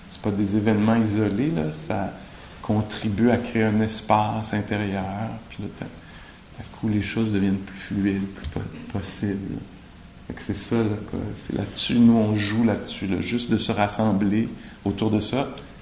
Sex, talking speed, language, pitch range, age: male, 150 wpm, English, 100-125 Hz, 50-69